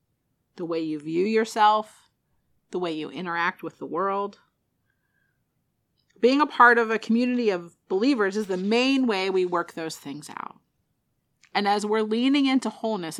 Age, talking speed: 30-49, 160 wpm